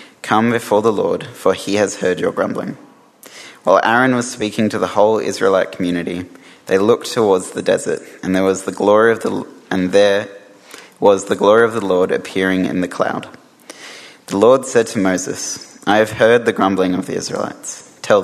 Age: 20-39